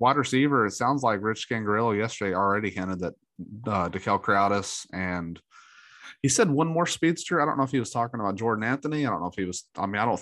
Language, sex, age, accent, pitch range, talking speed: English, male, 30-49, American, 95-120 Hz, 230 wpm